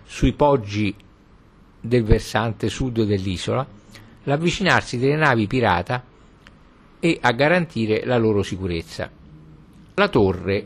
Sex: male